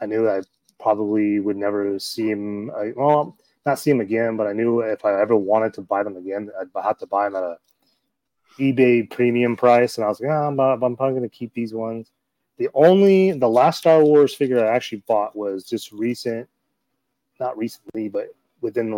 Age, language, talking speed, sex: 30-49, English, 210 wpm, male